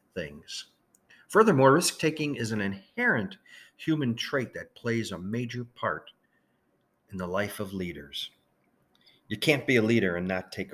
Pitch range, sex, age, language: 100-130 Hz, male, 50-69, English